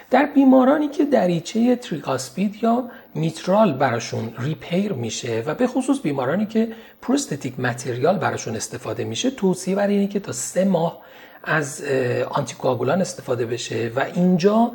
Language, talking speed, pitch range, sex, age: Persian, 135 wpm, 135-210 Hz, male, 40-59